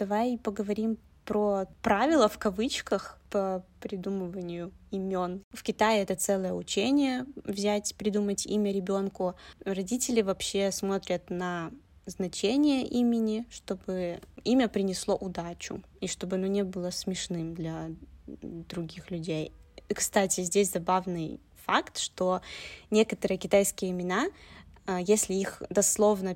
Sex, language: female, Russian